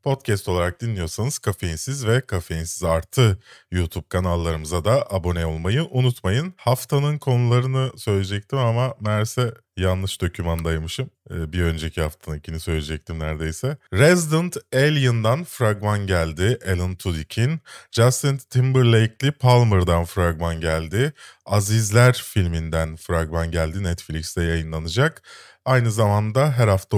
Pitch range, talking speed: 95-135 Hz, 100 wpm